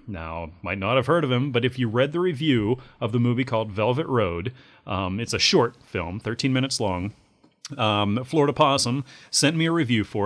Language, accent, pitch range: English, American, 100-135 Hz